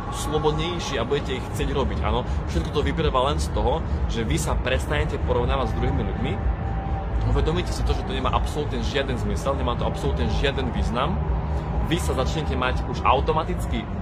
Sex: male